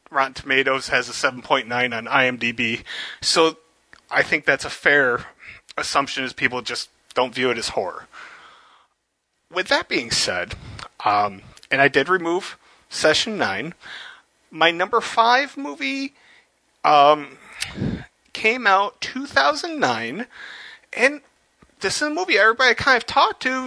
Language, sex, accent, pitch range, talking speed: English, male, American, 140-235 Hz, 140 wpm